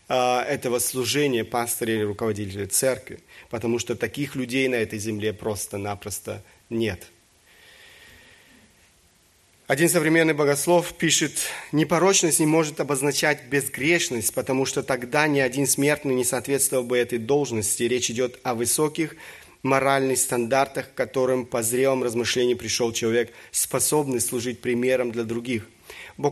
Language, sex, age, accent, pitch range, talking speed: Russian, male, 30-49, native, 120-150 Hz, 125 wpm